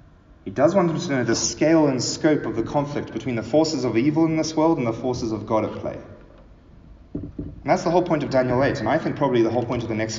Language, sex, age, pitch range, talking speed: English, male, 30-49, 90-125 Hz, 270 wpm